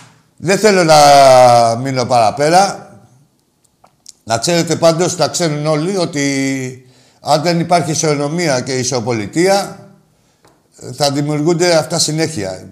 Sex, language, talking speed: male, Greek, 105 wpm